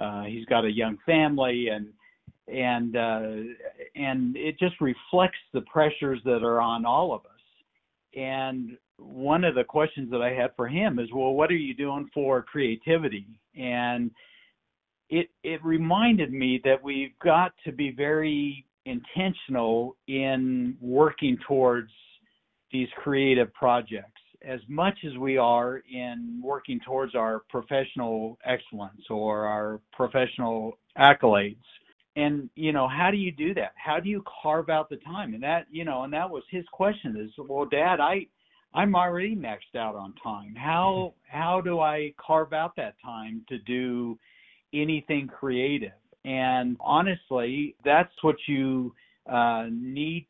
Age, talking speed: 60-79, 150 wpm